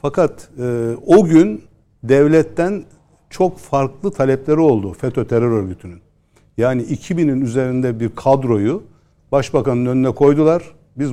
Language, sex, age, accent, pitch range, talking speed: Turkish, male, 60-79, native, 115-145 Hz, 115 wpm